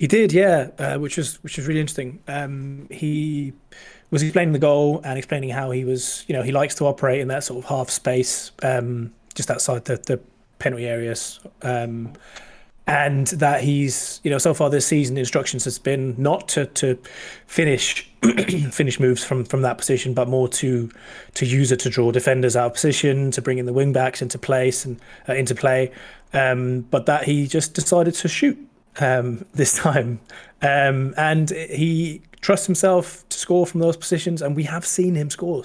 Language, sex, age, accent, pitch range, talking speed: English, male, 20-39, British, 130-155 Hz, 195 wpm